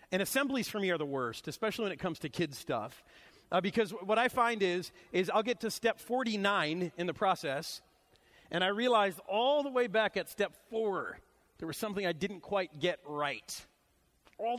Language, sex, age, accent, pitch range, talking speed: English, male, 40-59, American, 180-235 Hz, 200 wpm